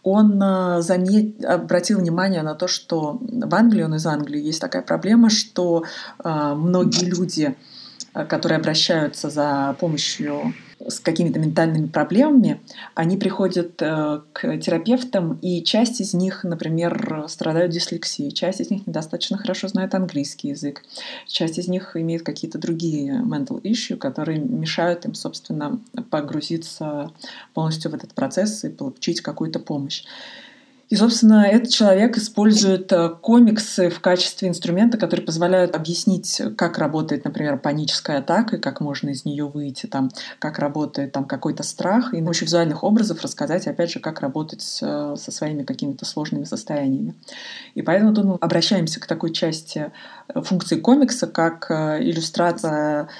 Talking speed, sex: 140 wpm, female